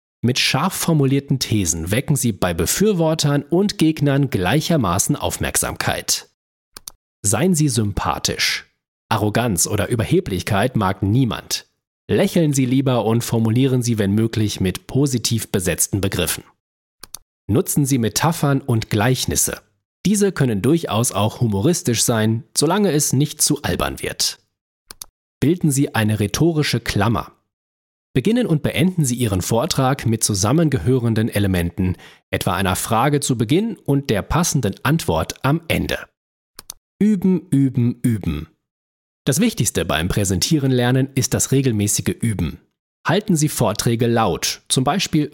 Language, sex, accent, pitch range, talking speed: German, male, German, 105-150 Hz, 120 wpm